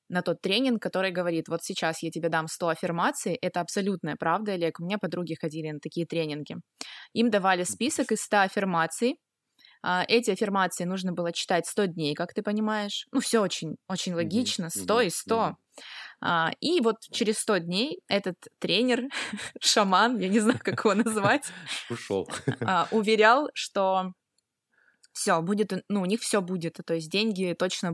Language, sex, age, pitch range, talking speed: Russian, female, 20-39, 170-220 Hz, 155 wpm